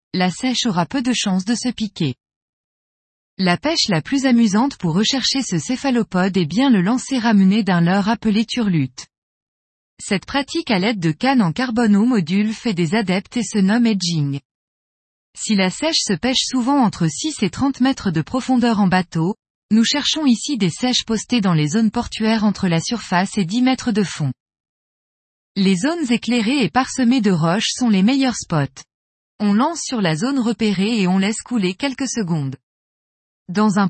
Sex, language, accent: female, French, French